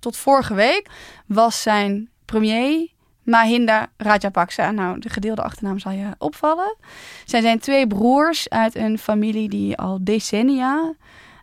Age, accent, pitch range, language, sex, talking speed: 10-29, Dutch, 190-240 Hz, Dutch, female, 130 wpm